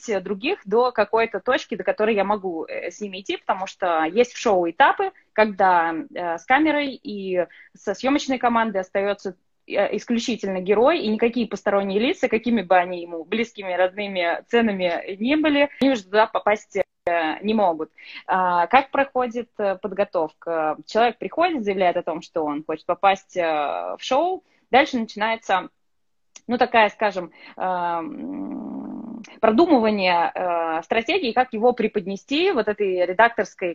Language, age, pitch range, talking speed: Russian, 20-39, 185-240 Hz, 130 wpm